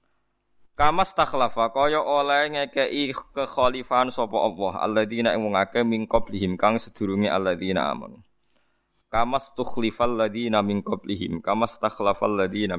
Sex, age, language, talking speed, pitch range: male, 20-39, Indonesian, 160 wpm, 100-125 Hz